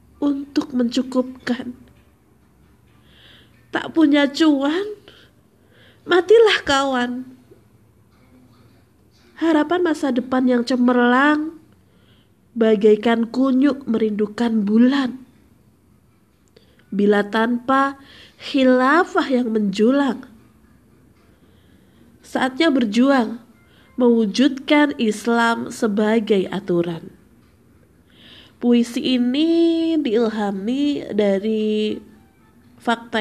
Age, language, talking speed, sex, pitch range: 20-39, Indonesian, 60 wpm, female, 215-265 Hz